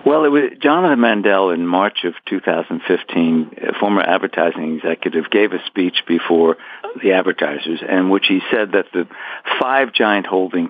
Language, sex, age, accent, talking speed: English, male, 60-79, American, 175 wpm